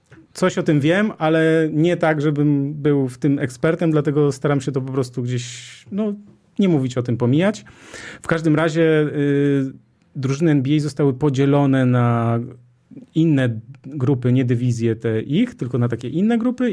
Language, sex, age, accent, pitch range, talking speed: Polish, male, 40-59, native, 125-150 Hz, 160 wpm